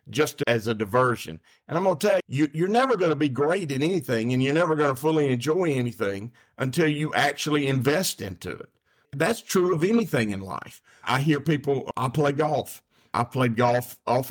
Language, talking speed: English, 205 wpm